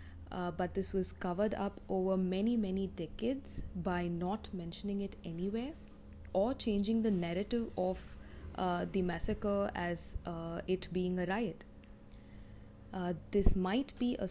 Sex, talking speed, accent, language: female, 145 wpm, Indian, English